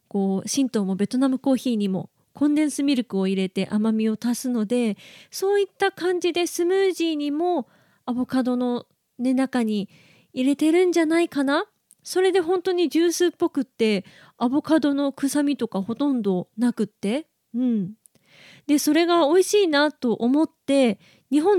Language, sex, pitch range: Japanese, female, 225-300 Hz